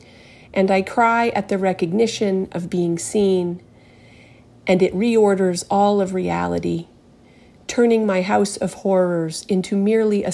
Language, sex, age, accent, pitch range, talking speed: English, female, 40-59, American, 180-220 Hz, 135 wpm